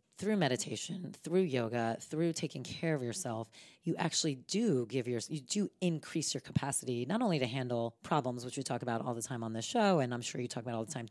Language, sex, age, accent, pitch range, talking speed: English, female, 30-49, American, 125-160 Hz, 230 wpm